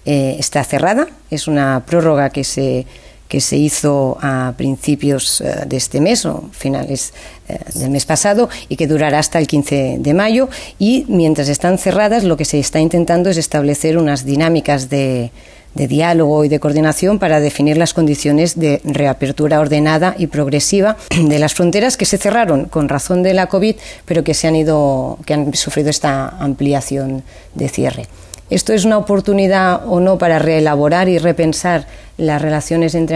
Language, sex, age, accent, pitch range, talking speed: Spanish, female, 40-59, Spanish, 145-170 Hz, 165 wpm